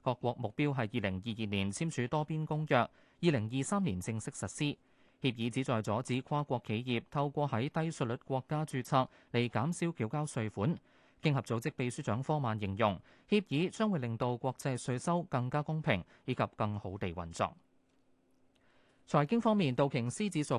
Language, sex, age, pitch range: Chinese, male, 20-39, 110-155 Hz